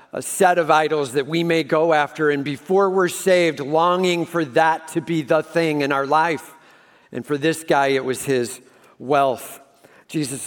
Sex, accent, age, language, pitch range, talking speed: male, American, 50-69, English, 125-160 Hz, 185 wpm